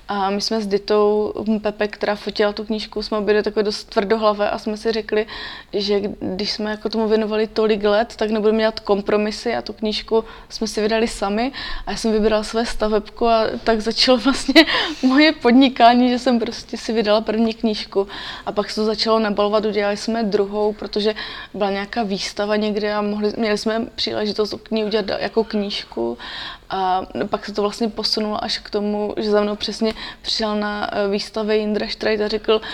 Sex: female